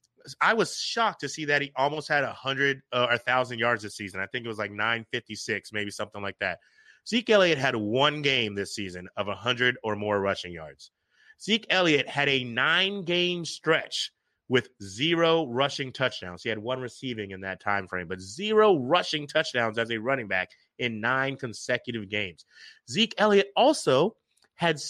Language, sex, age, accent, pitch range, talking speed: English, male, 30-49, American, 110-145 Hz, 185 wpm